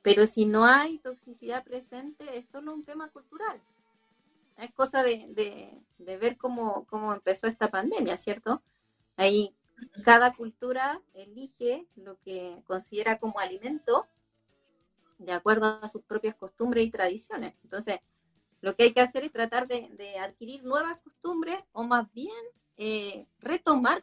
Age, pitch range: 30-49, 210-255 Hz